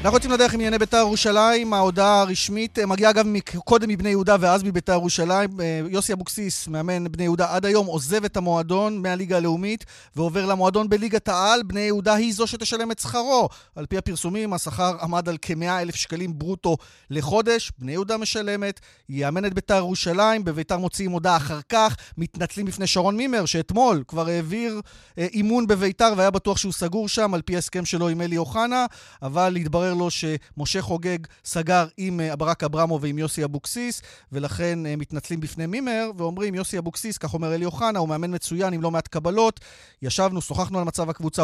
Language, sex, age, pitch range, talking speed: Hebrew, male, 30-49, 160-205 Hz, 150 wpm